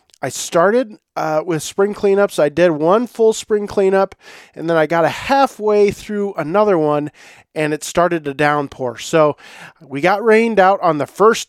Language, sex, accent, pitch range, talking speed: English, male, American, 145-195 Hz, 180 wpm